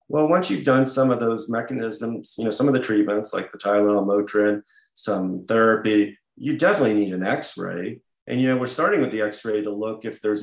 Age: 30-49